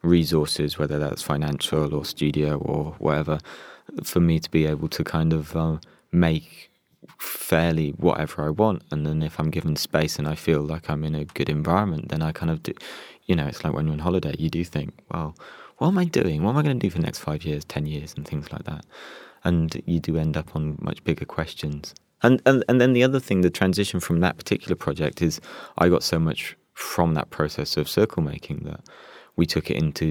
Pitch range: 75-85 Hz